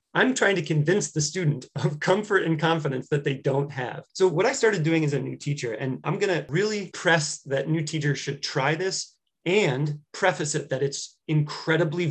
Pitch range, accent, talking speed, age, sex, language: 140-175 Hz, American, 205 wpm, 30-49, male, English